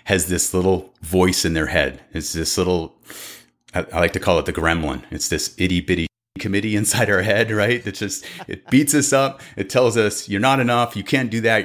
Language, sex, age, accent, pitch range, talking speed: English, male, 30-49, American, 90-115 Hz, 220 wpm